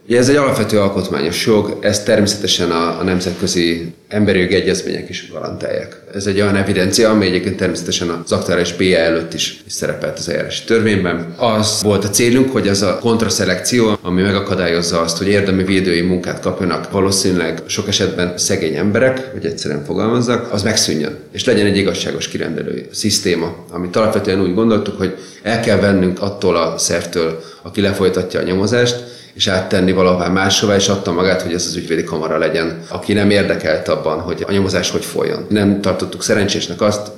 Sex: male